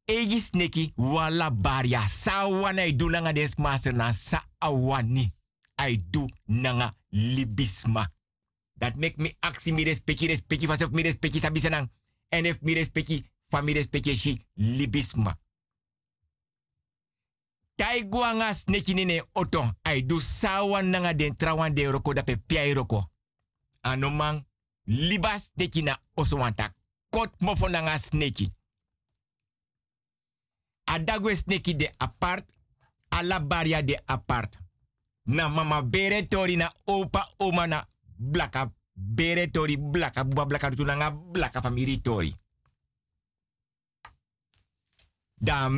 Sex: male